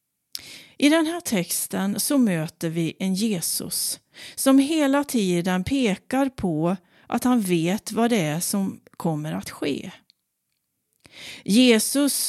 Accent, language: native, Swedish